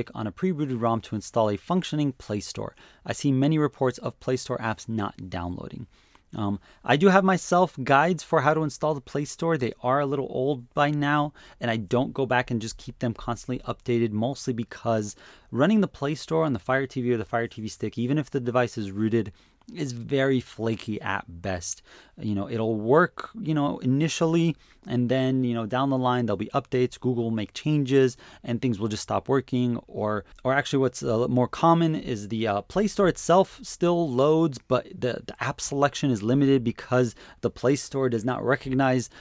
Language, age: English, 30-49